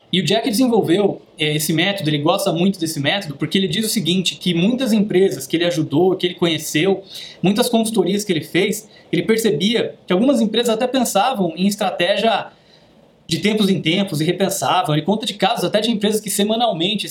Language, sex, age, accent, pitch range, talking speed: Portuguese, male, 20-39, Brazilian, 170-215 Hz, 190 wpm